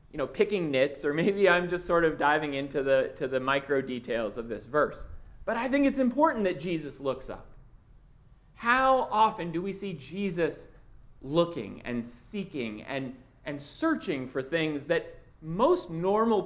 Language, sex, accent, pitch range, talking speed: English, male, American, 140-230 Hz, 170 wpm